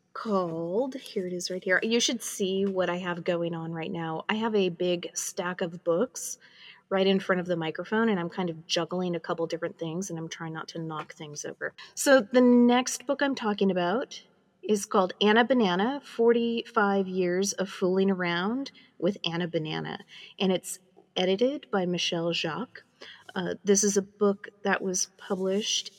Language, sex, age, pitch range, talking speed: English, female, 30-49, 180-225 Hz, 180 wpm